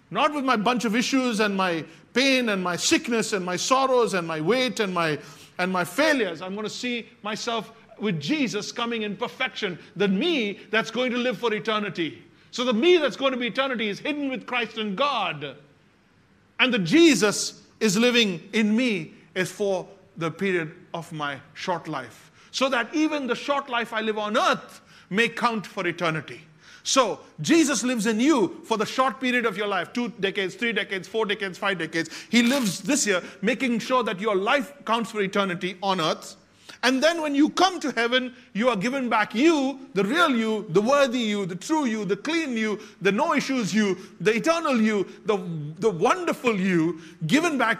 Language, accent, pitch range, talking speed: English, Indian, 185-255 Hz, 195 wpm